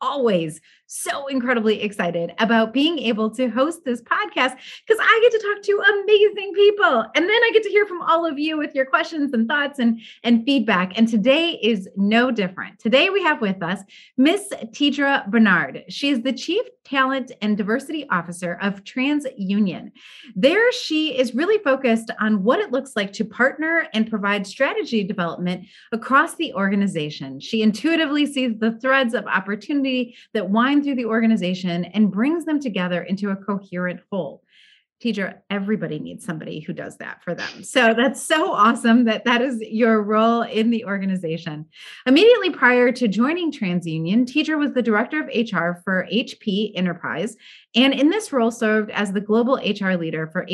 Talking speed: 170 wpm